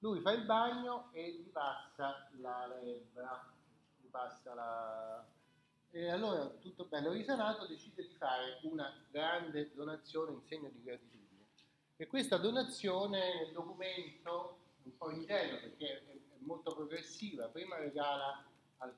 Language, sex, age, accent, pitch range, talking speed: Italian, male, 30-49, native, 130-170 Hz, 135 wpm